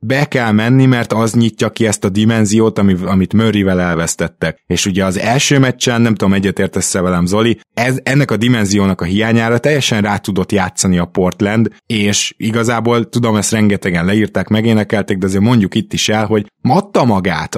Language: Hungarian